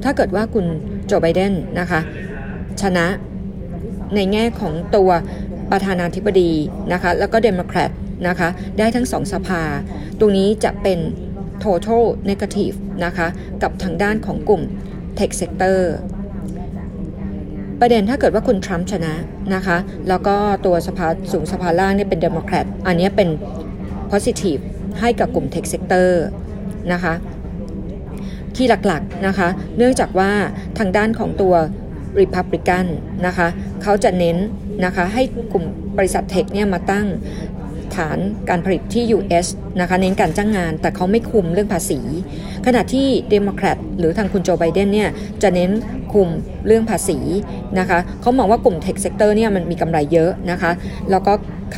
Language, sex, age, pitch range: Thai, female, 20-39, 175-210 Hz